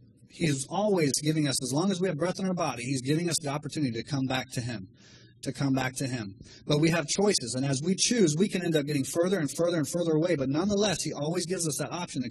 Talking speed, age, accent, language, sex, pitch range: 275 wpm, 30-49, American, English, male, 125-160 Hz